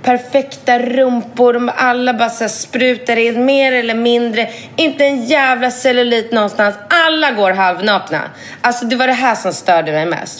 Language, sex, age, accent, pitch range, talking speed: Swedish, female, 30-49, native, 185-255 Hz, 155 wpm